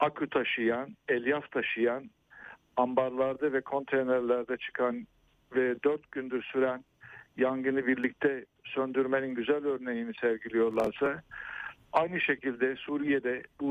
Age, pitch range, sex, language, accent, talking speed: 60-79, 125-140 Hz, male, Turkish, native, 95 wpm